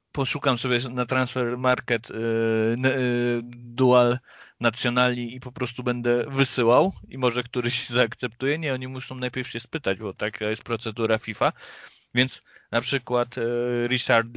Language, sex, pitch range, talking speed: Polish, male, 110-130 Hz, 140 wpm